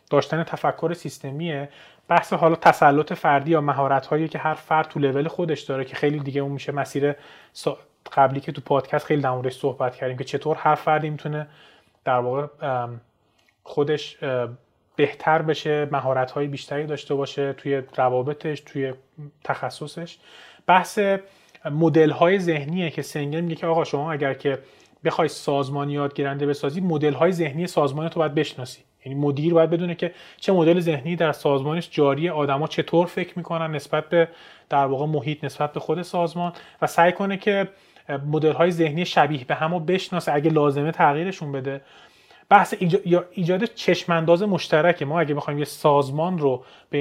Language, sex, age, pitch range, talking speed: Persian, male, 30-49, 140-170 Hz, 150 wpm